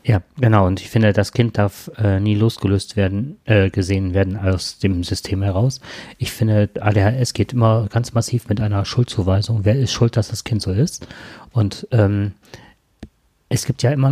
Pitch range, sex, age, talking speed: 100-125 Hz, male, 30-49, 185 wpm